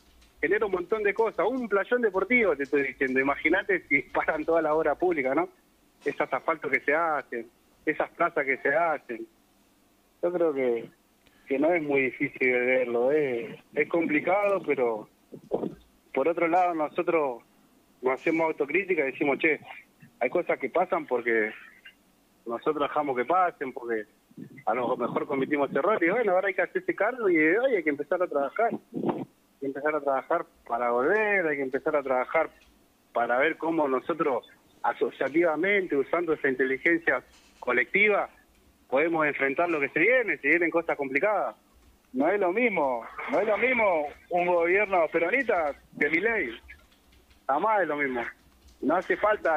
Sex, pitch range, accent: male, 140-205 Hz, Argentinian